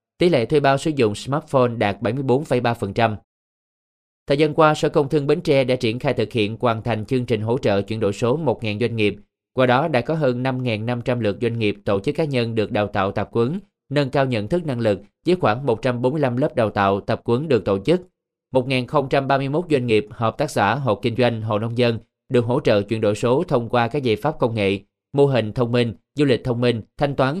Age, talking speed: 20-39, 230 wpm